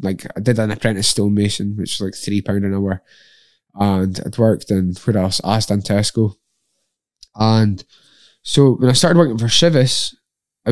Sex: male